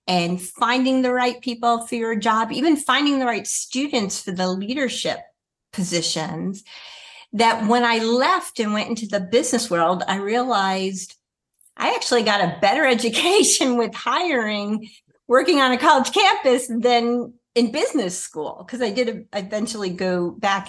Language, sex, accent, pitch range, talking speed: English, female, American, 185-245 Hz, 150 wpm